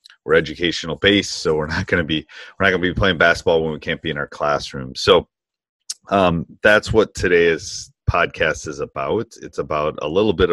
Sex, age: male, 30-49